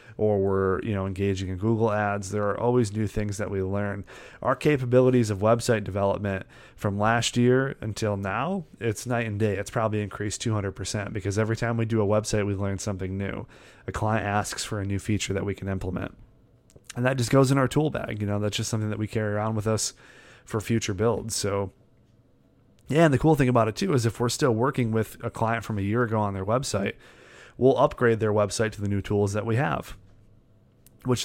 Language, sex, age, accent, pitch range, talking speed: English, male, 30-49, American, 105-120 Hz, 220 wpm